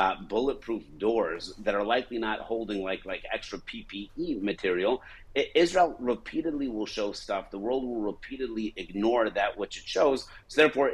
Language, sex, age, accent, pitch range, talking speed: English, male, 50-69, American, 105-130 Hz, 160 wpm